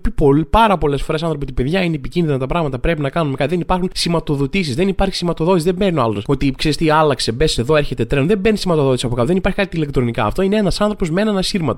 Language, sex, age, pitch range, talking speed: Greek, male, 20-39, 130-185 Hz, 200 wpm